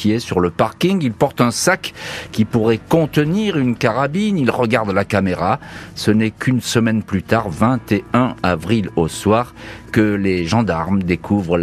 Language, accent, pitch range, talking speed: French, French, 95-125 Hz, 155 wpm